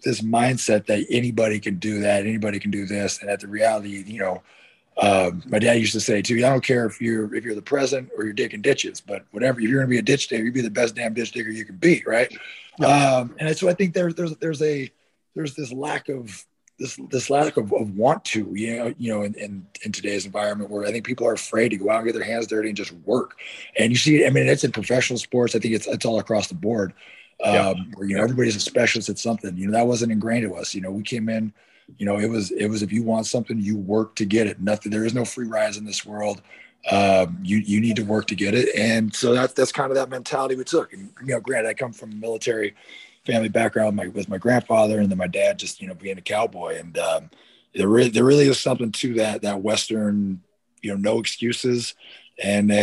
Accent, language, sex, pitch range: American, English, male, 105-120 Hz